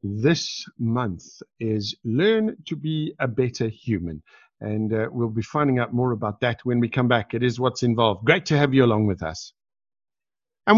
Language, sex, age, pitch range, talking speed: English, male, 50-69, 115-155 Hz, 190 wpm